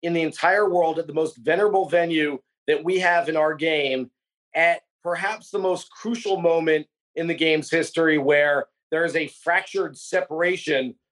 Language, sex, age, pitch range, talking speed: English, male, 30-49, 160-190 Hz, 165 wpm